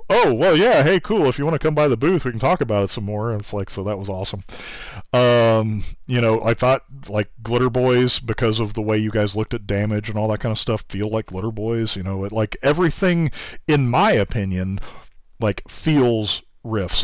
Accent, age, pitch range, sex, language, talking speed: American, 40-59, 105-130 Hz, male, English, 230 wpm